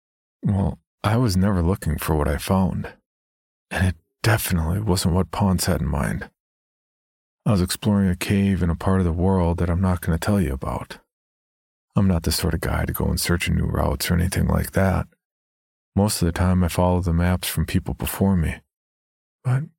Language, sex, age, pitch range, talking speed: English, male, 40-59, 85-95 Hz, 200 wpm